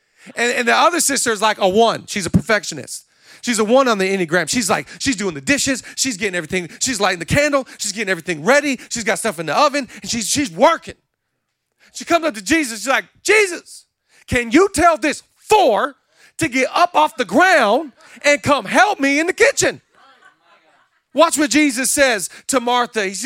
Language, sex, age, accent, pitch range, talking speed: English, male, 40-59, American, 190-265 Hz, 200 wpm